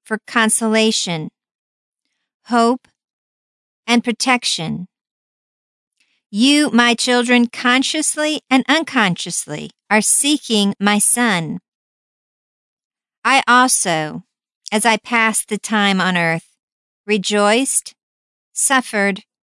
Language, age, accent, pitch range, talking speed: English, 50-69, American, 195-250 Hz, 80 wpm